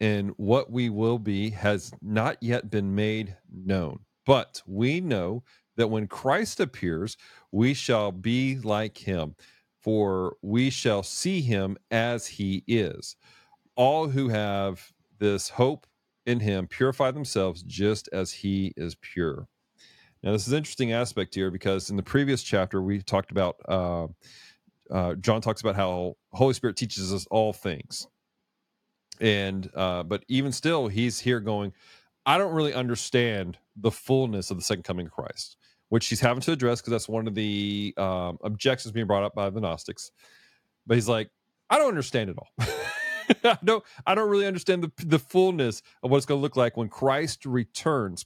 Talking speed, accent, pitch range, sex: 170 wpm, American, 100-125 Hz, male